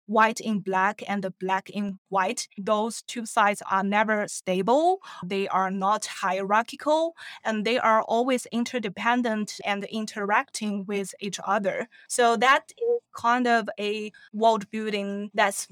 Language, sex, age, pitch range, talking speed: English, female, 20-39, 195-230 Hz, 140 wpm